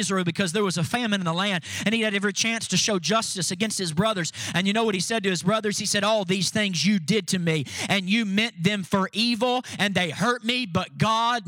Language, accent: English, American